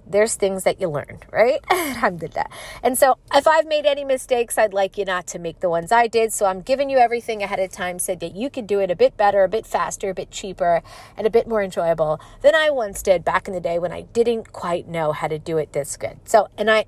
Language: English